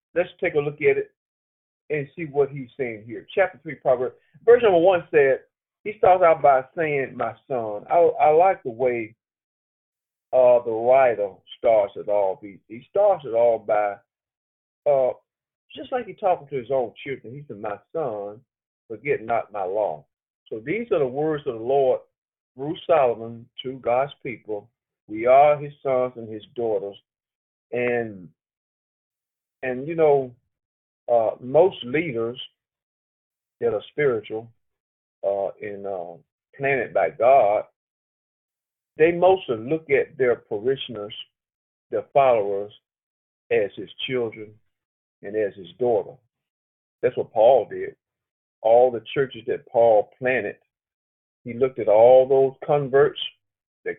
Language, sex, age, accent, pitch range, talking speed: English, male, 40-59, American, 110-175 Hz, 140 wpm